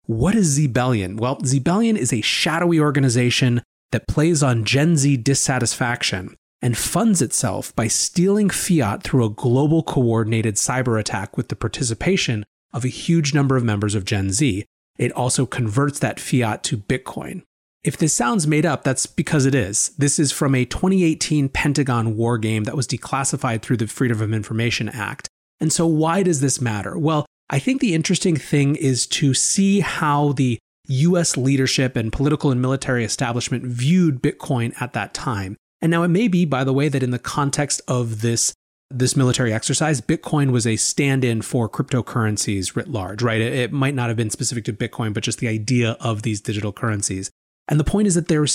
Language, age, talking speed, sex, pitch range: English, 30-49, 185 wpm, male, 115-150 Hz